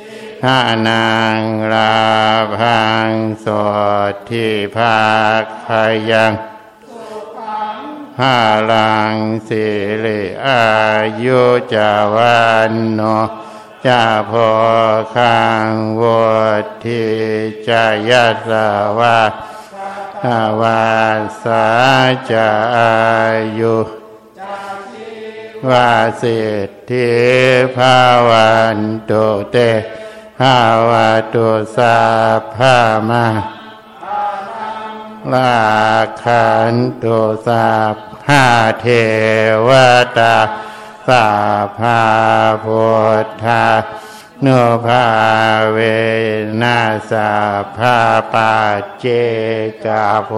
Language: Thai